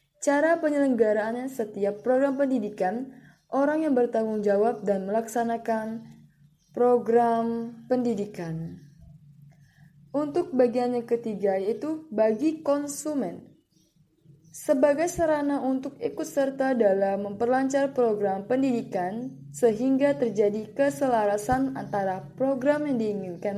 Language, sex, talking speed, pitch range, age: Malay, female, 90 wpm, 185-270 Hz, 10-29